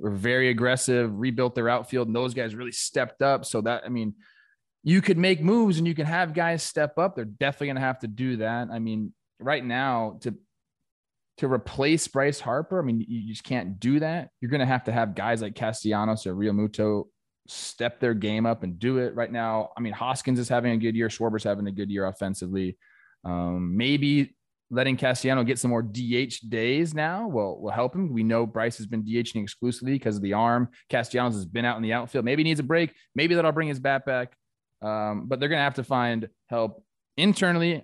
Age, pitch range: 20-39, 110-135 Hz